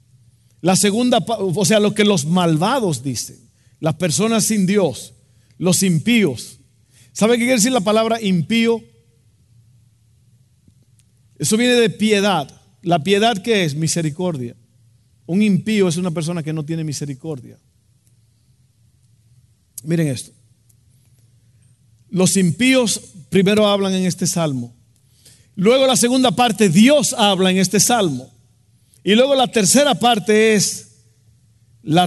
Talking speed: 120 wpm